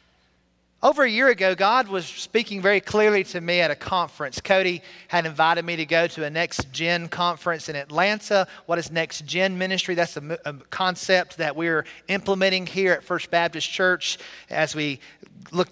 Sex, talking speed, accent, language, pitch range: male, 180 wpm, American, English, 155-190 Hz